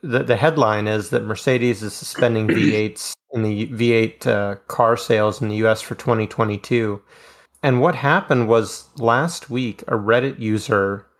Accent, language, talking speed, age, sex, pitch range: American, English, 155 wpm, 30-49, male, 105-120 Hz